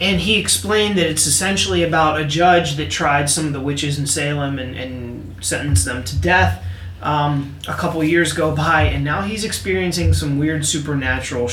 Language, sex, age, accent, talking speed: English, male, 30-49, American, 185 wpm